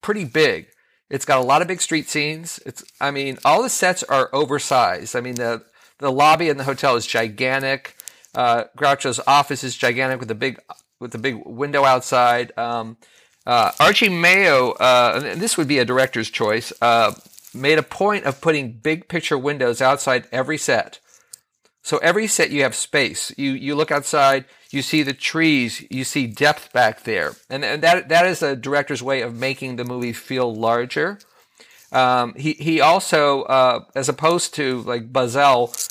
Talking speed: 180 wpm